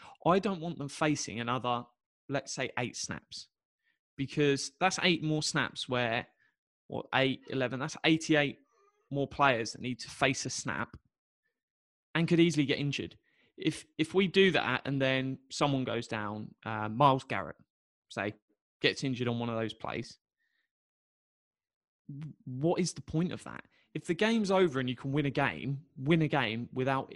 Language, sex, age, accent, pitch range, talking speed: English, male, 20-39, British, 120-155 Hz, 165 wpm